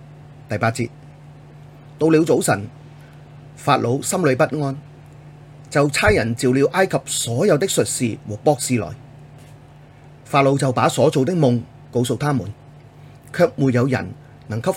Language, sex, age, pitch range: Chinese, male, 30-49, 125-145 Hz